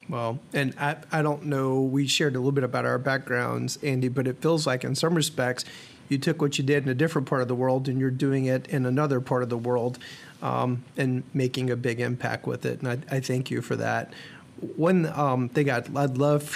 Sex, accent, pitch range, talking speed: male, American, 130-150 Hz, 235 wpm